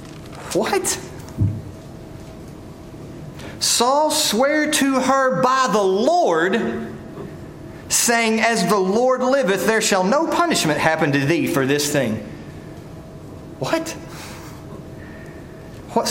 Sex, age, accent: male, 30-49, American